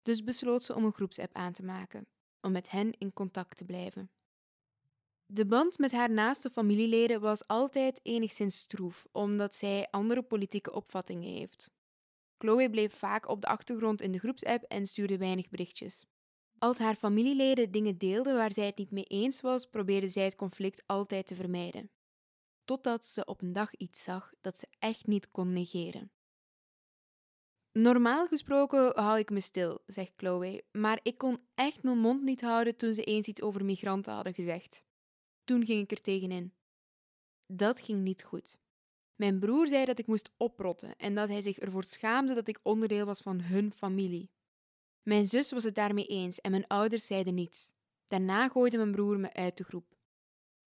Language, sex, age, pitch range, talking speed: English, female, 10-29, 190-230 Hz, 175 wpm